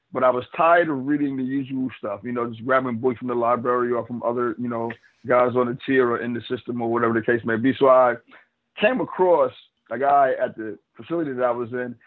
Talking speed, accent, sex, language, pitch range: 245 wpm, American, male, English, 120-135 Hz